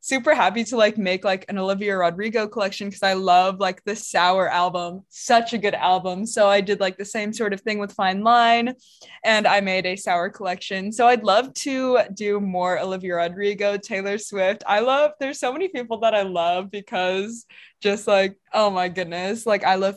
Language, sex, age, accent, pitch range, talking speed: English, female, 20-39, American, 180-215 Hz, 200 wpm